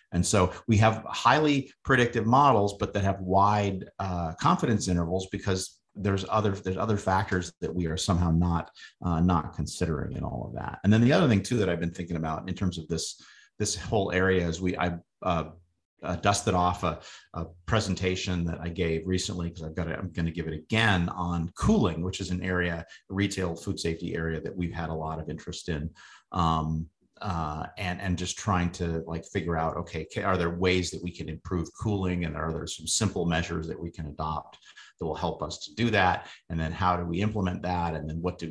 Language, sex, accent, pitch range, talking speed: English, male, American, 85-100 Hz, 215 wpm